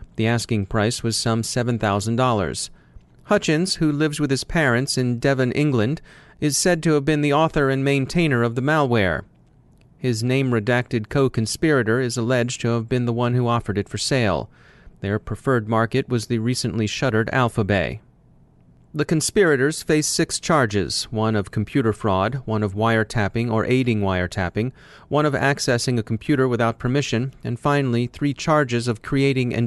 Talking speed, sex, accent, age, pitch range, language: 160 wpm, male, American, 30-49, 110-135 Hz, English